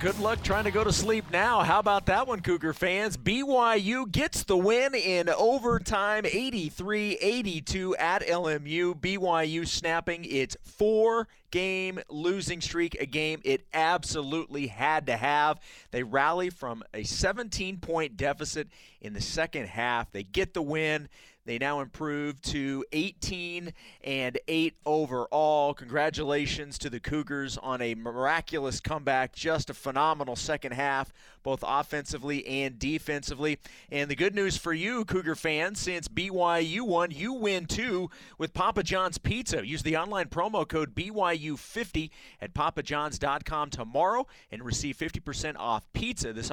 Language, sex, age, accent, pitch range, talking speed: English, male, 30-49, American, 145-185 Hz, 140 wpm